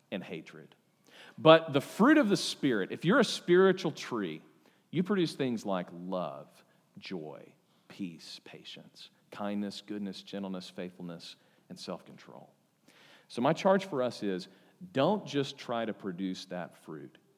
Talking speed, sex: 140 wpm, male